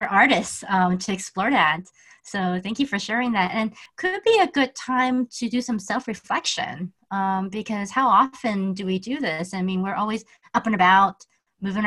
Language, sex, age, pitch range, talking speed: English, female, 30-49, 190-250 Hz, 185 wpm